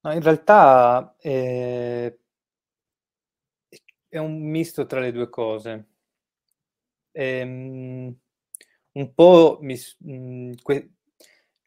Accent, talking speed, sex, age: native, 70 wpm, male, 20-39